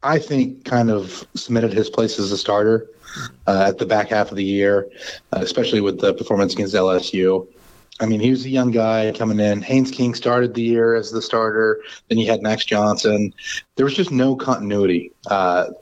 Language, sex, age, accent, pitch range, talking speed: English, male, 30-49, American, 100-125 Hz, 195 wpm